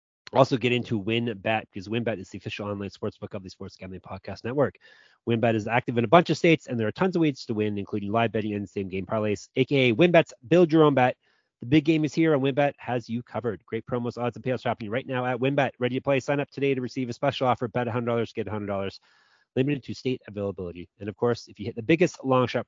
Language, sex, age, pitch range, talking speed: English, male, 30-49, 110-140 Hz, 250 wpm